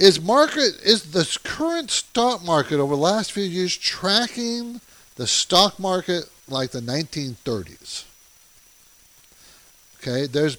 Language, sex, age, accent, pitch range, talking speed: English, male, 50-69, American, 125-180 Hz, 125 wpm